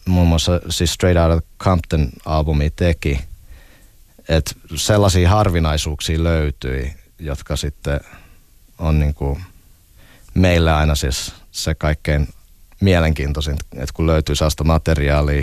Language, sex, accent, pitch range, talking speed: Finnish, male, native, 75-95 Hz, 100 wpm